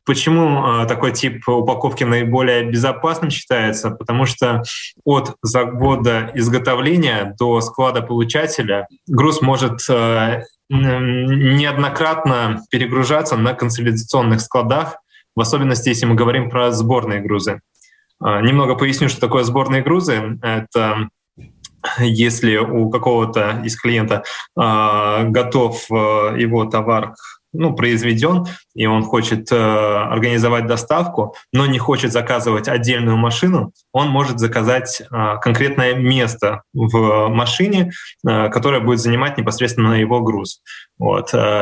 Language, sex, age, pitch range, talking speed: Russian, male, 20-39, 110-130 Hz, 110 wpm